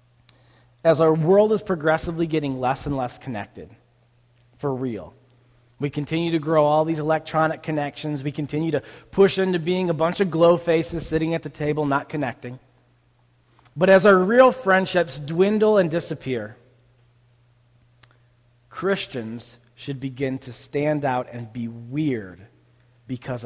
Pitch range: 120-170 Hz